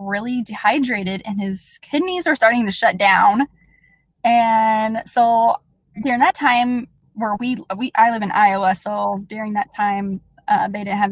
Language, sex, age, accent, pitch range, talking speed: English, female, 10-29, American, 190-235 Hz, 160 wpm